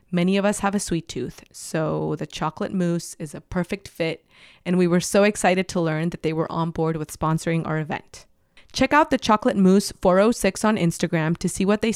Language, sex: English, female